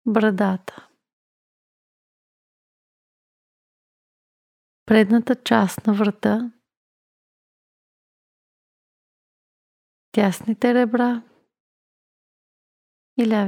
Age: 30-49